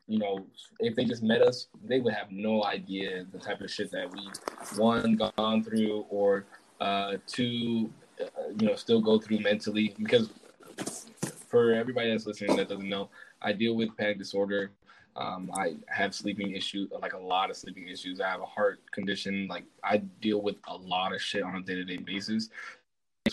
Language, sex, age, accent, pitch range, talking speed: English, male, 20-39, American, 100-130 Hz, 190 wpm